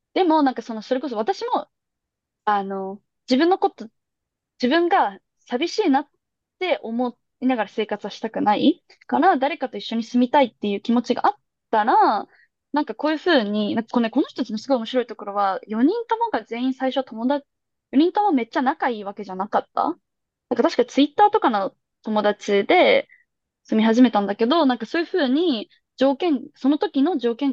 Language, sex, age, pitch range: Japanese, female, 20-39, 215-290 Hz